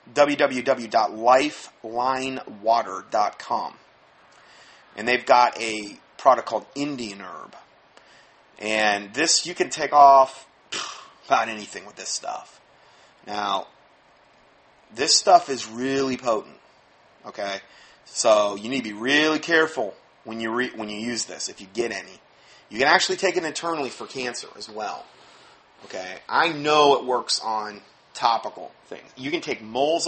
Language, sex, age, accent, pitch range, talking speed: English, male, 30-49, American, 110-155 Hz, 130 wpm